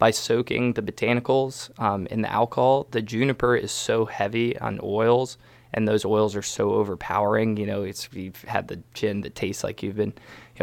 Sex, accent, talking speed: male, American, 190 wpm